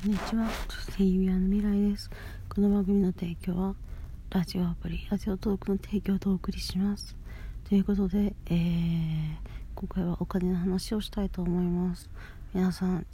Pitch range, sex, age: 170-195 Hz, female, 40-59